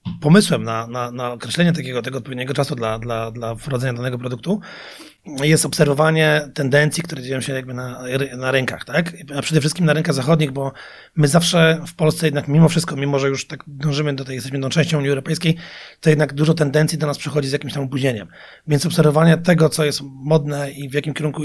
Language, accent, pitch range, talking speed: Polish, native, 140-165 Hz, 205 wpm